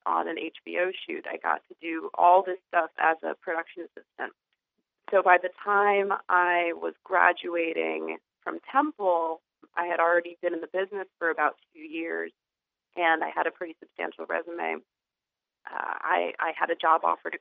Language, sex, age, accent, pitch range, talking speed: English, female, 30-49, American, 165-225 Hz, 170 wpm